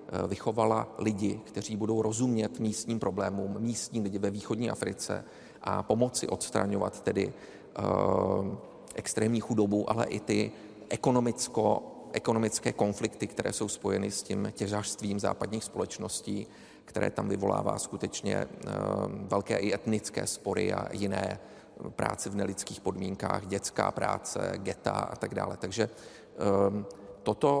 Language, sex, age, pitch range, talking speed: Czech, male, 40-59, 105-115 Hz, 125 wpm